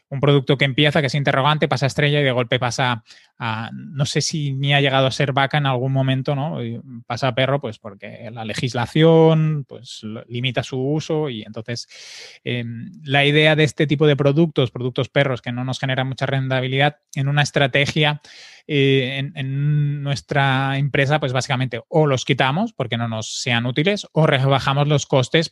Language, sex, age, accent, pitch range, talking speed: Spanish, male, 20-39, Spanish, 125-145 Hz, 190 wpm